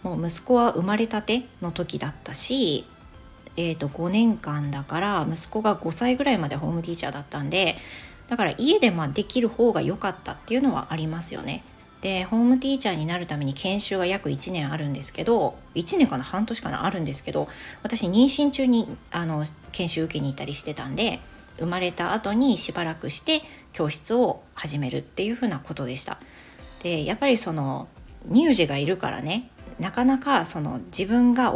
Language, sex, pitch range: Japanese, female, 150-220 Hz